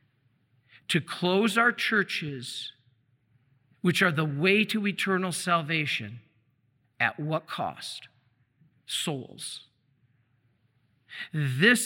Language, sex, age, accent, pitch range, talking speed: English, male, 50-69, American, 135-190 Hz, 80 wpm